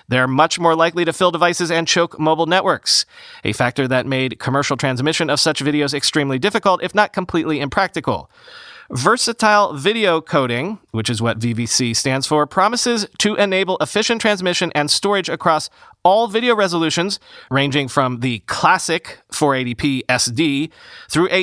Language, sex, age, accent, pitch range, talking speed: English, male, 30-49, American, 140-185 Hz, 150 wpm